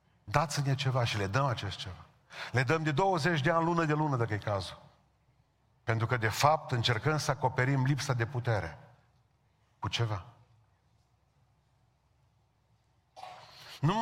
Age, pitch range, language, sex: 40-59, 125-160 Hz, Romanian, male